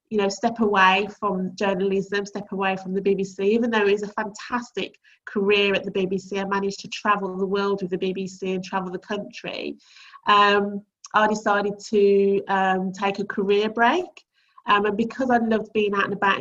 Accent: British